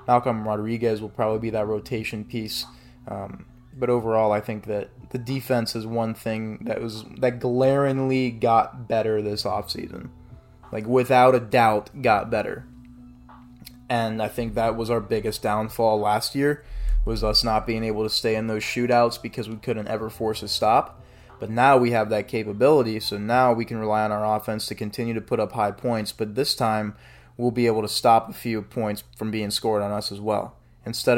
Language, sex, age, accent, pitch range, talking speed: English, male, 20-39, American, 105-120 Hz, 190 wpm